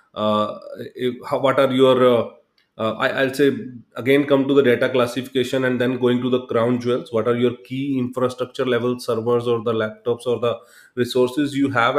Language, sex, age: English, male, 30-49